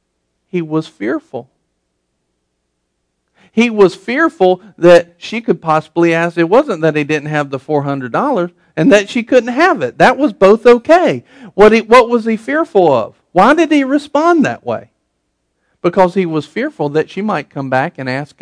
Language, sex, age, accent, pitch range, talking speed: English, male, 50-69, American, 145-210 Hz, 170 wpm